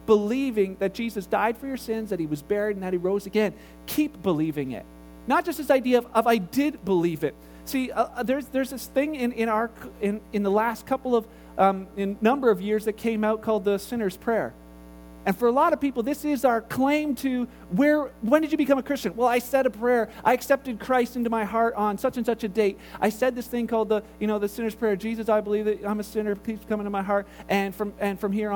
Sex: male